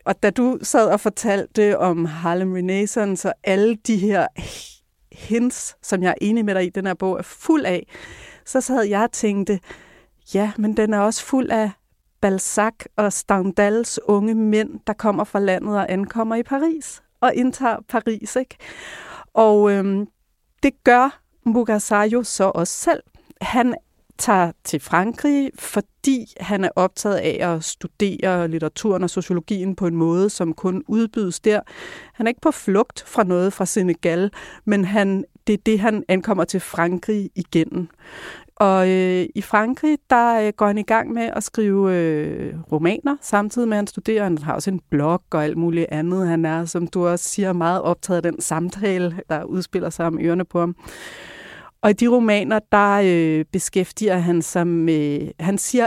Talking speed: 175 wpm